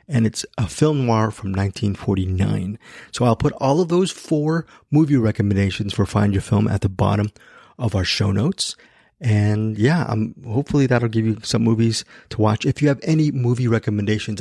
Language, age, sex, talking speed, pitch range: English, 30-49, male, 185 wpm, 105-125 Hz